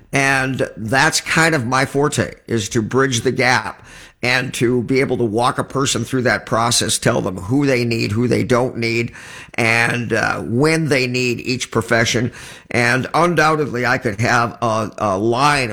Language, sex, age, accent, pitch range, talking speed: English, male, 50-69, American, 115-135 Hz, 175 wpm